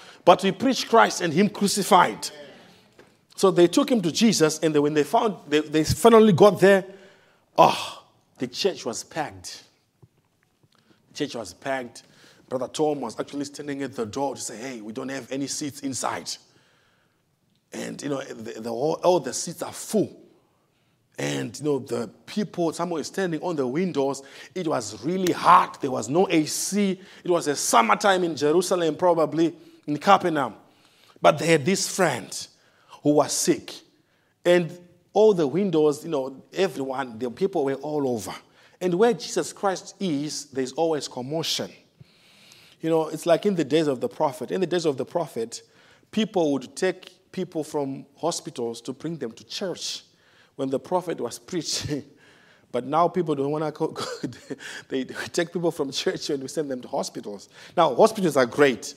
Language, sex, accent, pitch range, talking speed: English, male, Nigerian, 140-185 Hz, 170 wpm